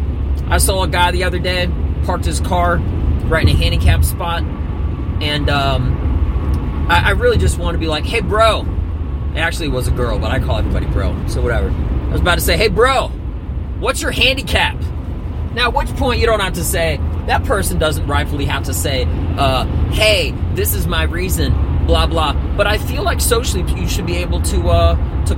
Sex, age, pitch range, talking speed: male, 30-49, 75-85 Hz, 205 wpm